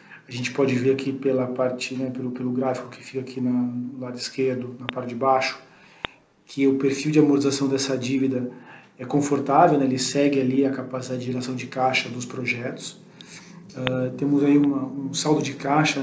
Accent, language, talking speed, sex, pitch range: Brazilian, Portuguese, 190 wpm, male, 130-140 Hz